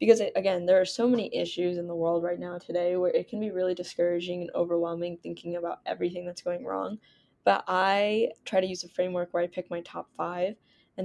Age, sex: 10-29, female